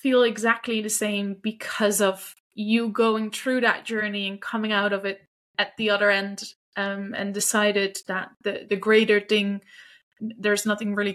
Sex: female